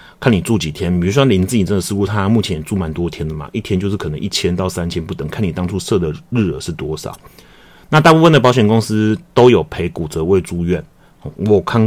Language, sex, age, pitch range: Chinese, male, 30-49, 85-110 Hz